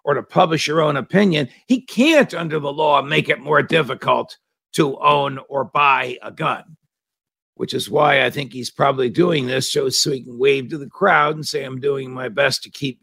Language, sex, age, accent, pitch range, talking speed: English, male, 60-79, American, 125-160 Hz, 205 wpm